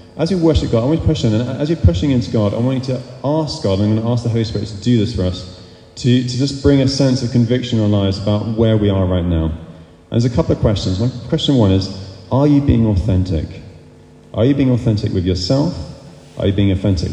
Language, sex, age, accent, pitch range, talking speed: English, male, 30-49, British, 95-120 Hz, 260 wpm